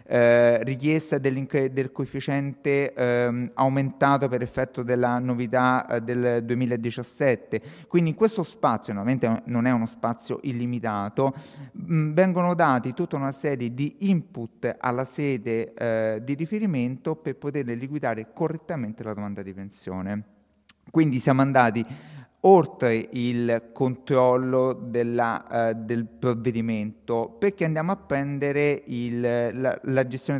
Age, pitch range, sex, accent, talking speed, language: 30-49, 115-140 Hz, male, native, 125 wpm, Italian